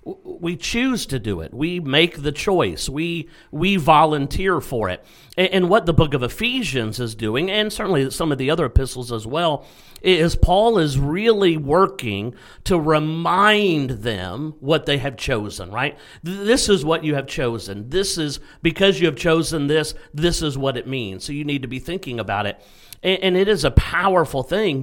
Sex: male